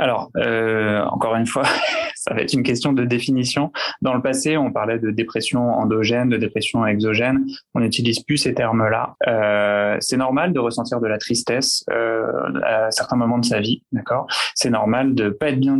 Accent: French